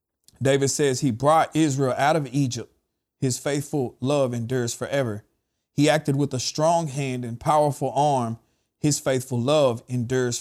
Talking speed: 150 wpm